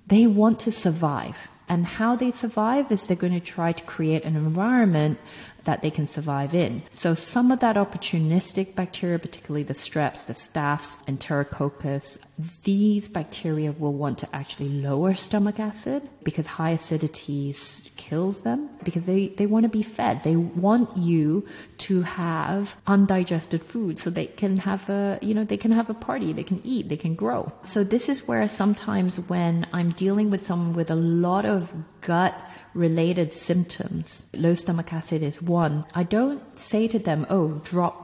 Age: 30-49